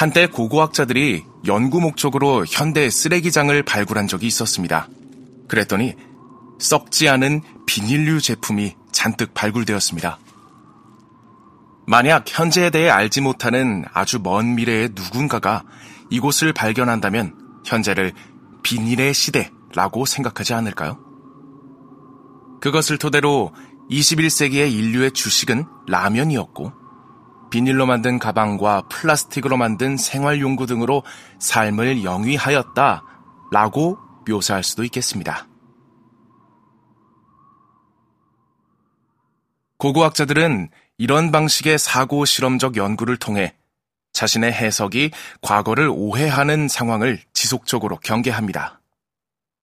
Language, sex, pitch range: Korean, male, 110-145 Hz